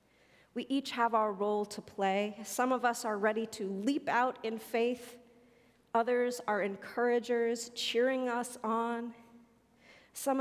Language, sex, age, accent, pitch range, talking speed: English, female, 40-59, American, 200-240 Hz, 140 wpm